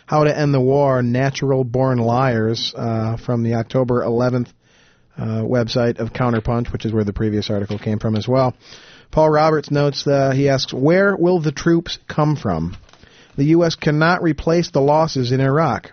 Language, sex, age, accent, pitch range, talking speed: English, male, 40-59, American, 120-155 Hz, 180 wpm